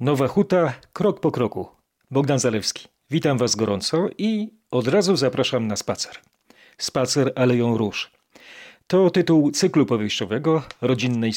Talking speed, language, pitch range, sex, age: 125 wpm, Polish, 120-150 Hz, male, 40-59